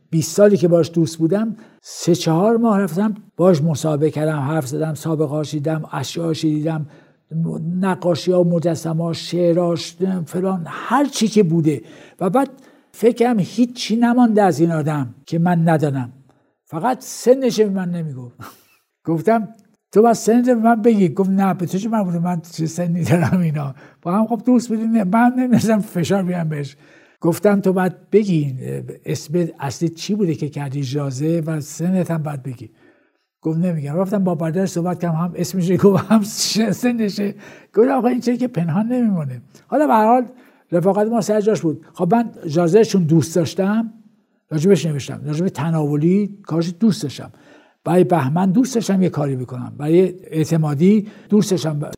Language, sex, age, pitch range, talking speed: Persian, male, 60-79, 160-215 Hz, 160 wpm